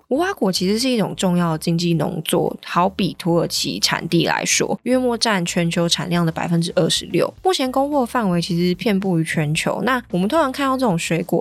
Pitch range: 170-200 Hz